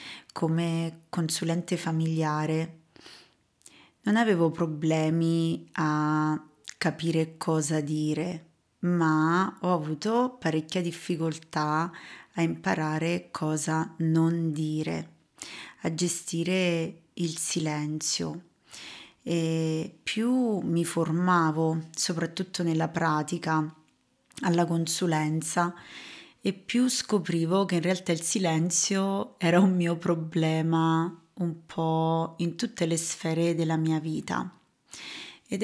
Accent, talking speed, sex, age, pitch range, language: native, 95 wpm, female, 30-49, 160-180 Hz, Italian